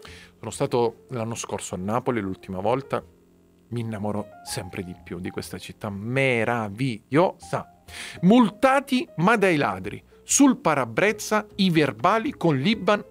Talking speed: 125 wpm